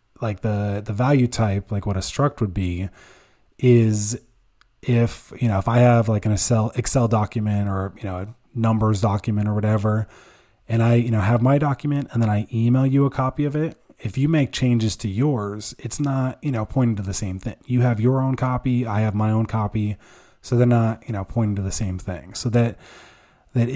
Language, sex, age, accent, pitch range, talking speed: English, male, 20-39, American, 100-120 Hz, 215 wpm